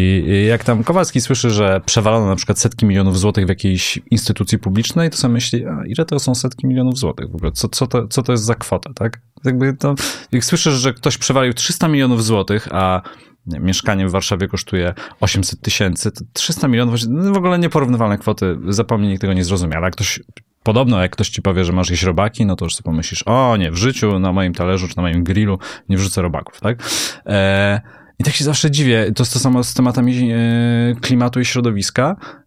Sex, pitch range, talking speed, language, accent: male, 95-125 Hz, 210 wpm, Polish, native